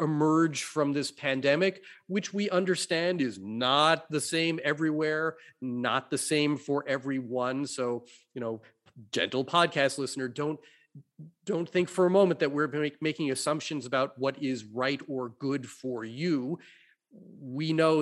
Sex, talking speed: male, 145 wpm